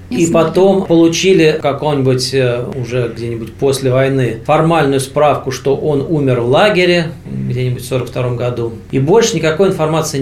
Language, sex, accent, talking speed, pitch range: Russian, male, native, 140 wpm, 125-160 Hz